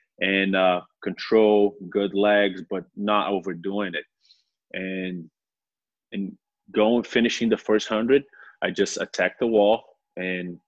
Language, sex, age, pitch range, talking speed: English, male, 20-39, 95-105 Hz, 125 wpm